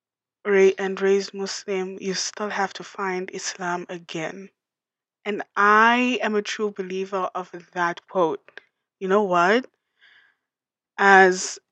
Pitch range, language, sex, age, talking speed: 185-220 Hz, English, female, 20-39, 120 wpm